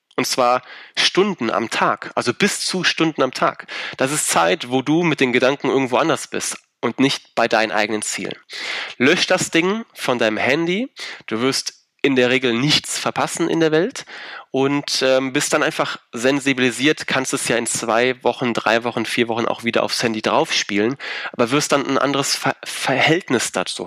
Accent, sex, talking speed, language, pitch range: German, male, 180 wpm, German, 120-145 Hz